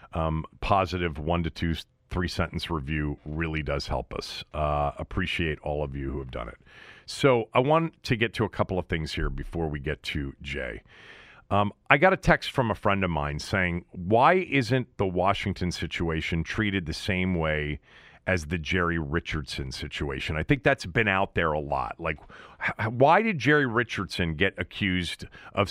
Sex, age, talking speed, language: male, 40-59, 180 wpm, English